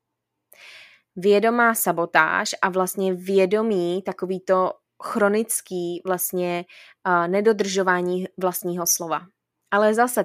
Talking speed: 80 wpm